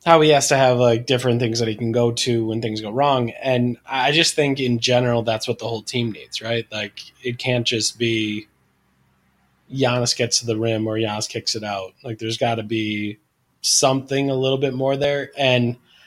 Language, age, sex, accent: English, 20-39, male, American